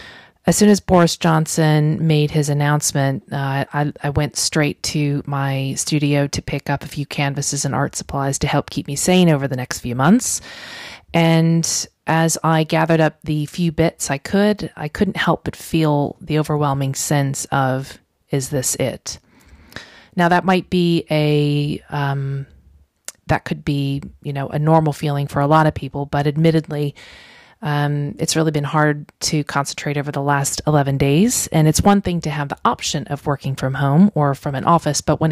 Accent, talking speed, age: American, 185 wpm, 30-49